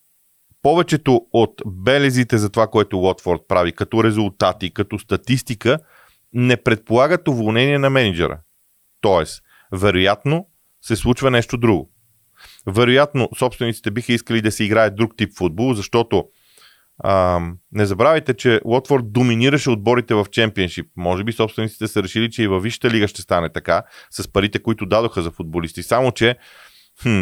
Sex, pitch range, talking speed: male, 95-125 Hz, 145 wpm